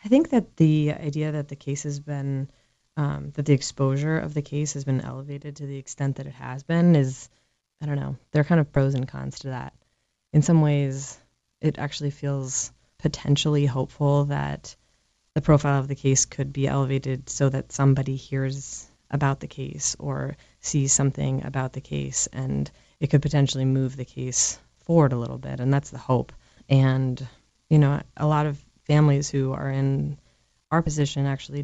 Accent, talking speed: American, 185 wpm